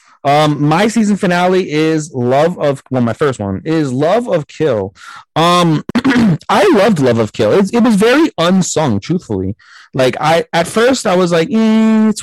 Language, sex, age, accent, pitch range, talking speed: English, male, 30-49, American, 105-135 Hz, 175 wpm